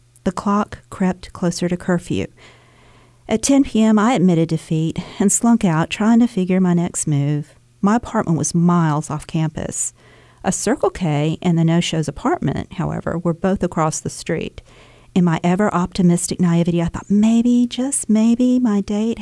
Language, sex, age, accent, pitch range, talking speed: English, female, 50-69, American, 160-205 Hz, 160 wpm